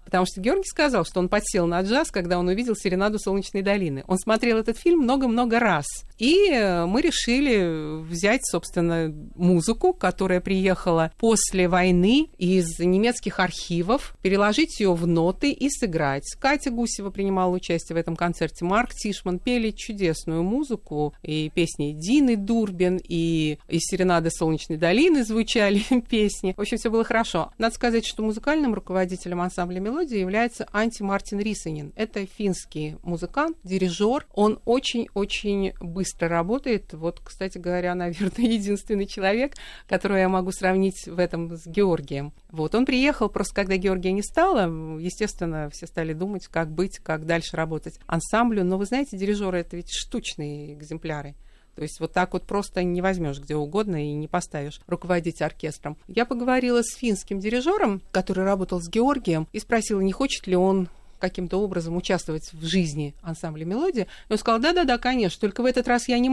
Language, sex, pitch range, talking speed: Russian, female, 170-225 Hz, 160 wpm